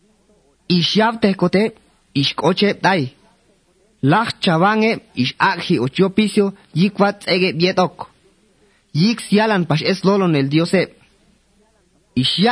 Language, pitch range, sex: English, 145-195 Hz, male